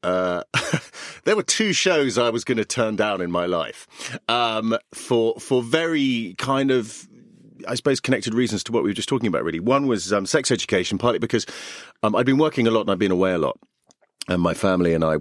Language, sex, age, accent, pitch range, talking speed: English, male, 40-59, British, 90-120 Hz, 220 wpm